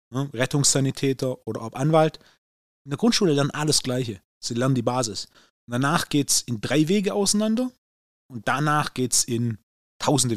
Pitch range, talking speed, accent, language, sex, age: 115-150 Hz, 155 wpm, German, German, male, 30-49